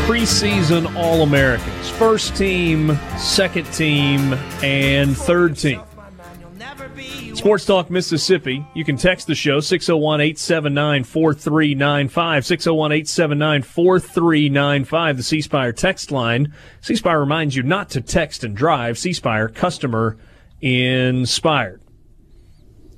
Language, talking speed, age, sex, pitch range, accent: English, 95 wpm, 30-49, male, 115-165 Hz, American